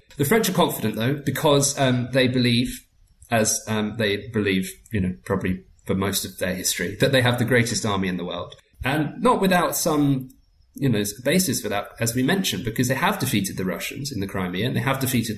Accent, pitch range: British, 95-125 Hz